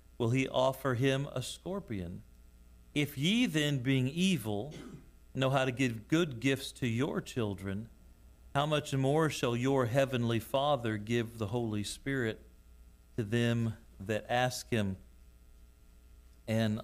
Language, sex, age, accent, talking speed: English, male, 40-59, American, 130 wpm